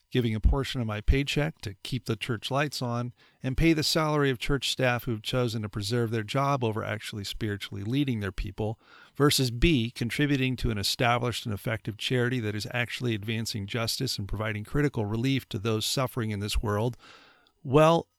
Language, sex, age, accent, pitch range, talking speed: English, male, 40-59, American, 110-135 Hz, 185 wpm